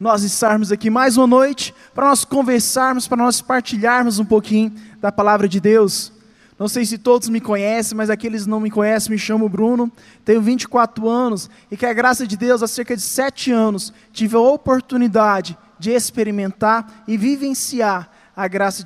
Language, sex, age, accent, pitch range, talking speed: Portuguese, male, 20-39, Brazilian, 210-260 Hz, 180 wpm